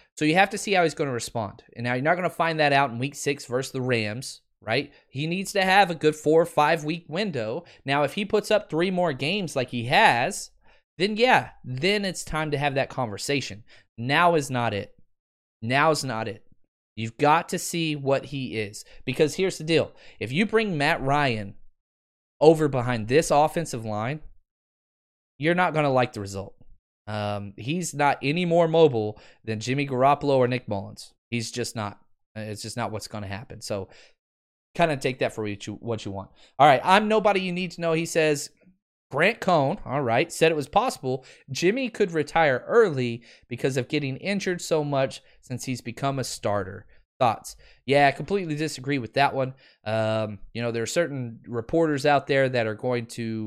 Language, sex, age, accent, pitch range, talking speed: English, male, 20-39, American, 115-160 Hz, 200 wpm